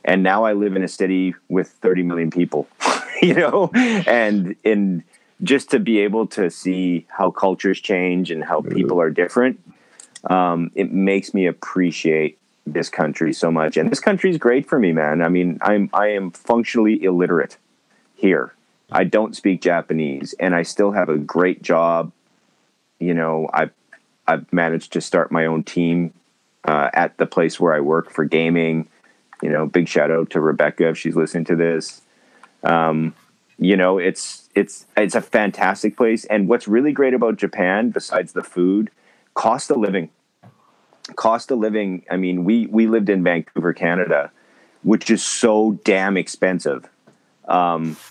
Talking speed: 165 wpm